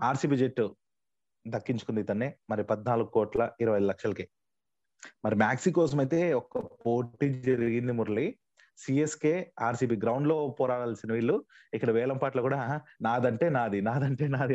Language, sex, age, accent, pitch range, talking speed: Telugu, male, 30-49, native, 115-150 Hz, 130 wpm